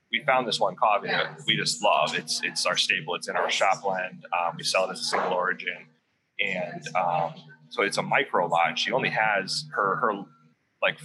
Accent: American